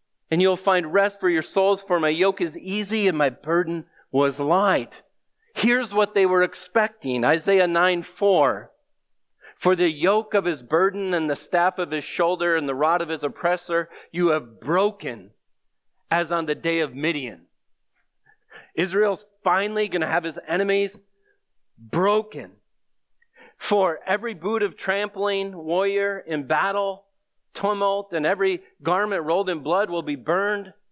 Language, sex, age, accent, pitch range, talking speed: English, male, 40-59, American, 165-200 Hz, 150 wpm